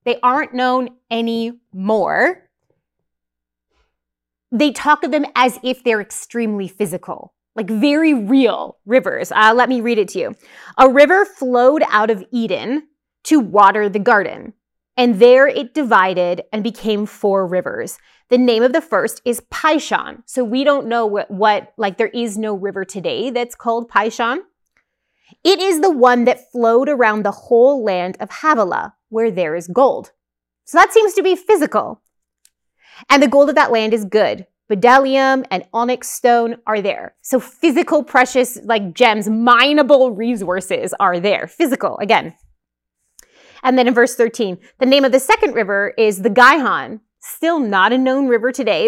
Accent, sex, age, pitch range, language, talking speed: American, female, 30-49, 205-265 Hz, English, 160 wpm